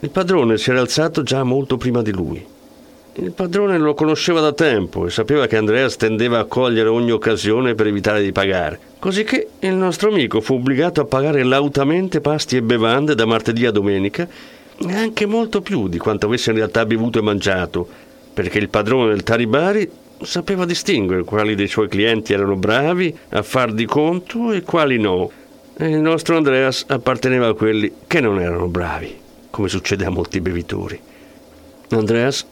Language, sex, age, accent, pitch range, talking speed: Italian, male, 50-69, native, 100-150 Hz, 175 wpm